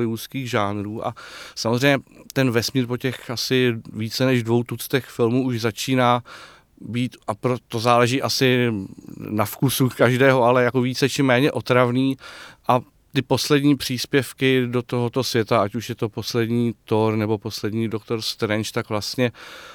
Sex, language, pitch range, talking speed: male, Czech, 110-130 Hz, 150 wpm